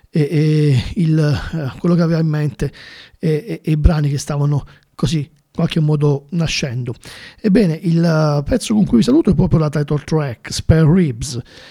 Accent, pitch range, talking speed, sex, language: native, 150-180 Hz, 170 wpm, male, Italian